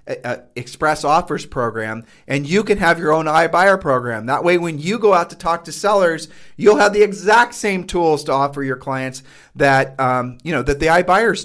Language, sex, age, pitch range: English, male, 40-59, 135-175 Hz